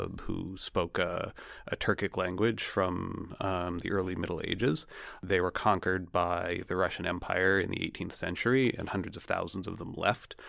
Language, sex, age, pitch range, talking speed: English, male, 30-49, 90-100 Hz, 170 wpm